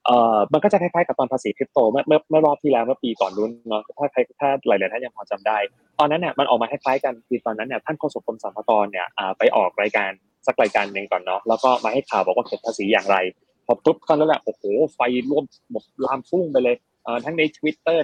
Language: Thai